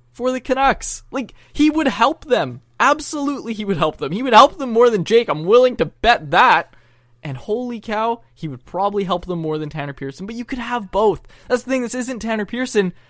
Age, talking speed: 20-39, 225 wpm